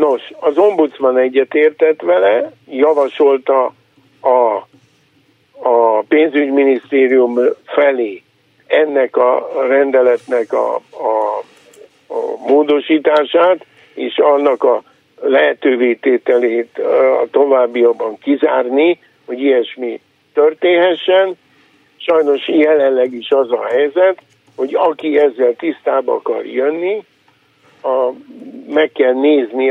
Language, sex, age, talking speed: Hungarian, male, 60-79, 85 wpm